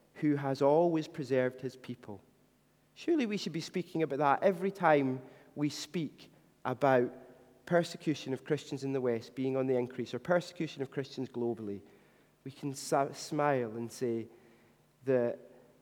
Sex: male